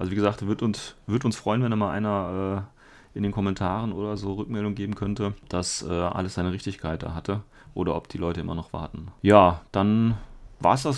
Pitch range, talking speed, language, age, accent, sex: 95-115 Hz, 215 wpm, German, 30-49, German, male